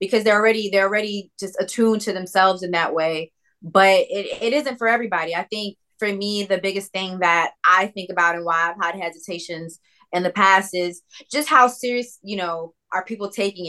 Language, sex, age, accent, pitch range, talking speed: English, female, 20-39, American, 175-200 Hz, 200 wpm